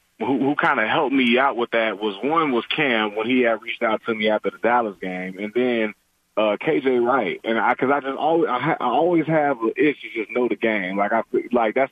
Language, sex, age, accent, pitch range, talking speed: English, male, 20-39, American, 110-130 Hz, 250 wpm